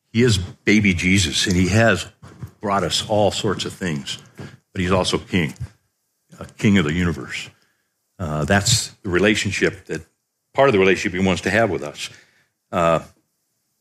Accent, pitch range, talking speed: American, 90-110 Hz, 175 wpm